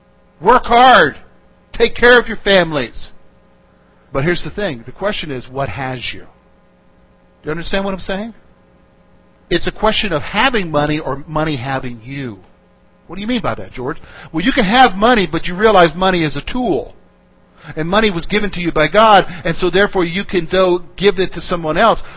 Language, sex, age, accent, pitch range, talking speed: English, male, 50-69, American, 150-230 Hz, 190 wpm